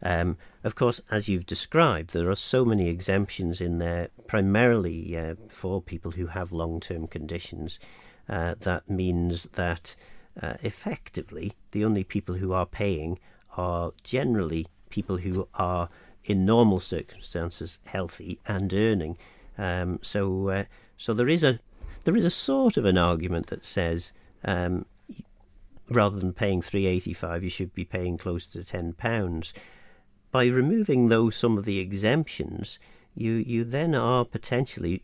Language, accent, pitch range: English, British, 90-105 Hz